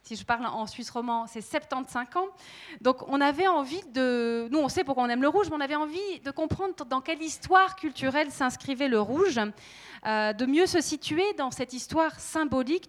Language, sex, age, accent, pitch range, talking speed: French, female, 30-49, French, 235-310 Hz, 205 wpm